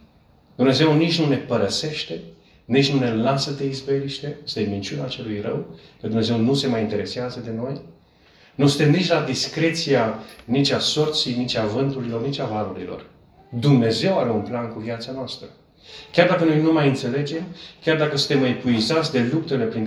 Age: 40-59